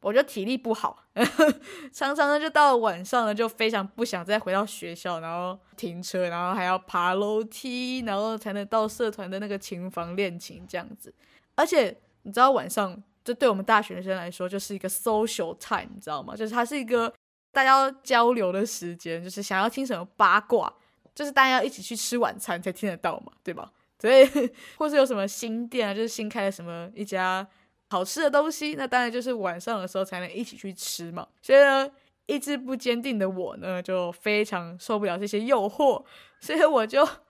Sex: female